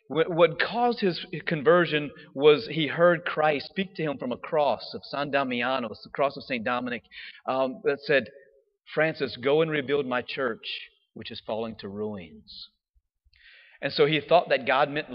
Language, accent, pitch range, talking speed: English, American, 125-175 Hz, 170 wpm